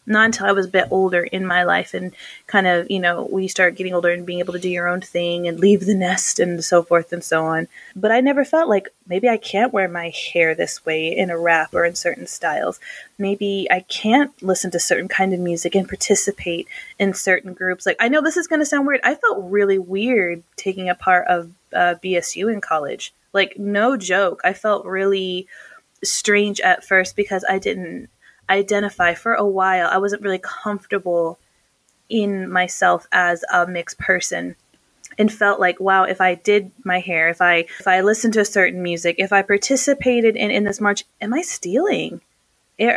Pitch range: 180-205 Hz